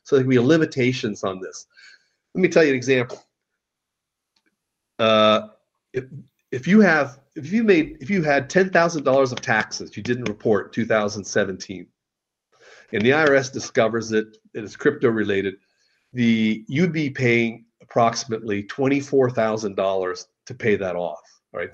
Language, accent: English, American